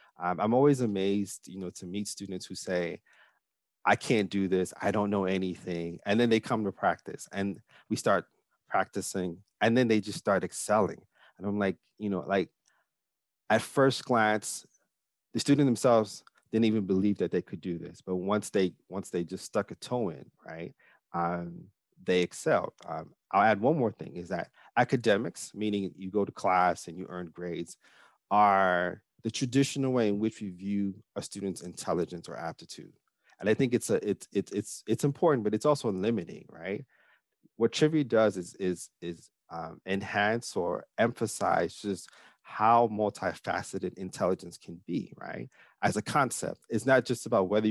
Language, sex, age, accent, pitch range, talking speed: English, male, 30-49, American, 95-110 Hz, 175 wpm